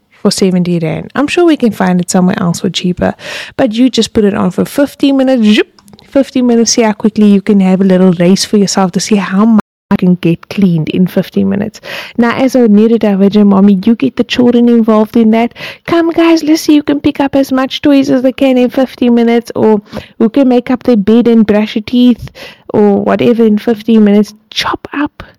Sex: female